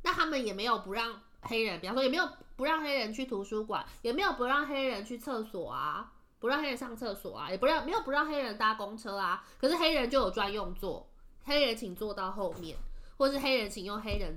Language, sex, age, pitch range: Chinese, female, 20-39, 170-235 Hz